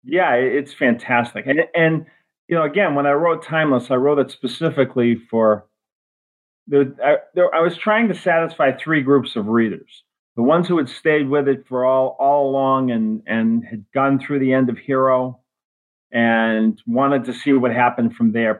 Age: 40-59